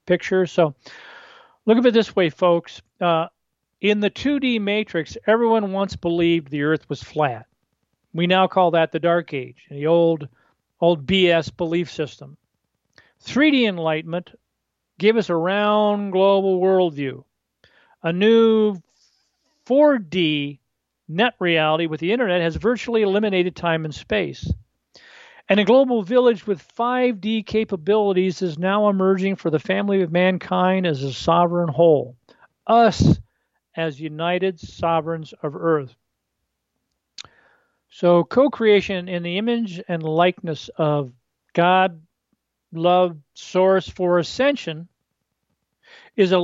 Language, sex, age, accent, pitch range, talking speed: English, male, 40-59, American, 160-205 Hz, 125 wpm